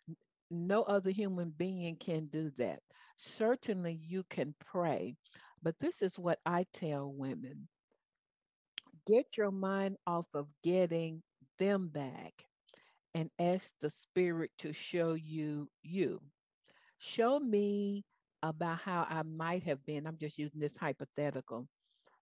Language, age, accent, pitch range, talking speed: English, 60-79, American, 150-180 Hz, 125 wpm